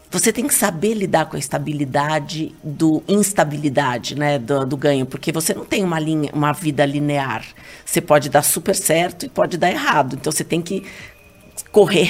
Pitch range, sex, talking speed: 150-200 Hz, female, 185 wpm